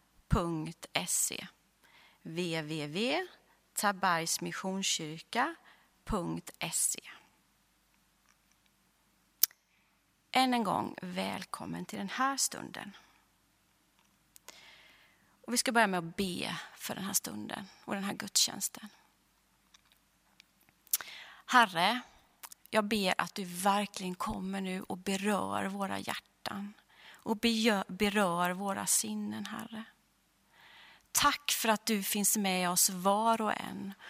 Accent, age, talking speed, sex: native, 30-49, 90 wpm, female